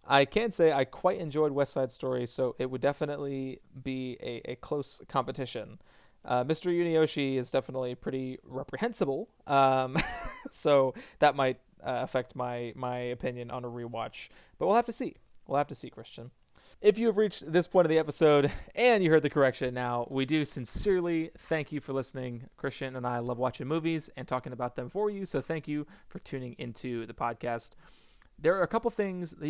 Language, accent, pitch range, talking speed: English, American, 130-170 Hz, 195 wpm